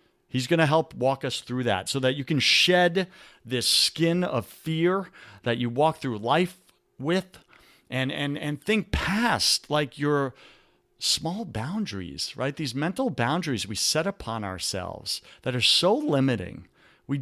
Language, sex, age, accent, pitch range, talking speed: English, male, 40-59, American, 120-160 Hz, 155 wpm